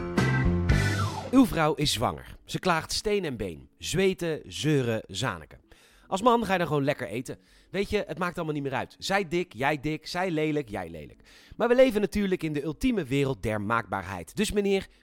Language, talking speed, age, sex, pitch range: Dutch, 190 wpm, 40-59, male, 125-190 Hz